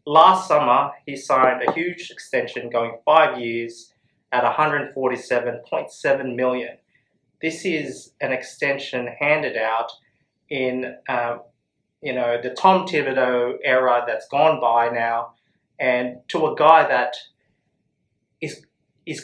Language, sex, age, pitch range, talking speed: English, male, 30-49, 120-155 Hz, 130 wpm